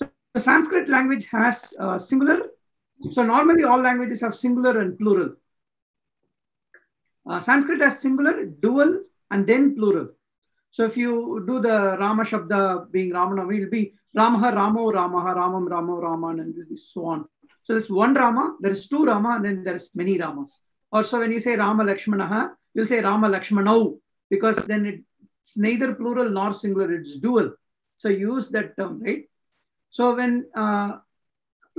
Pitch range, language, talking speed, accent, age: 200-245 Hz, English, 155 wpm, Indian, 50-69